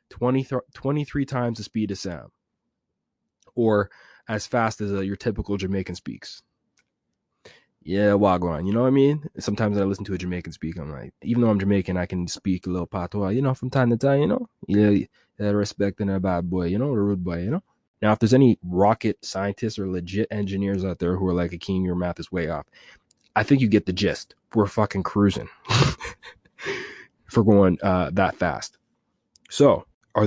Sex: male